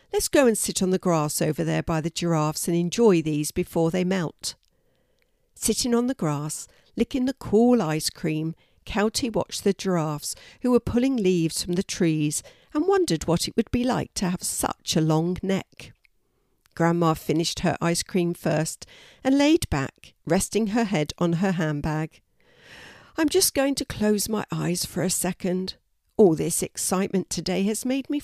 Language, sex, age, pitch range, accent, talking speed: English, female, 60-79, 160-230 Hz, British, 175 wpm